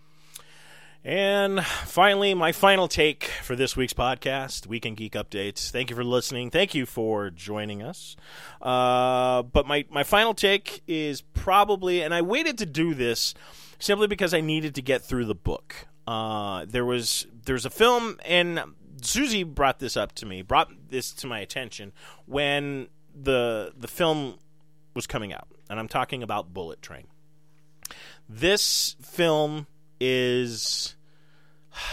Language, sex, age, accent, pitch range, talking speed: English, male, 30-49, American, 120-155 Hz, 145 wpm